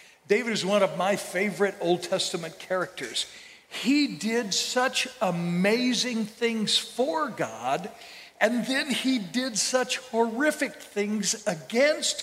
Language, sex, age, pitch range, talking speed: English, male, 60-79, 180-235 Hz, 120 wpm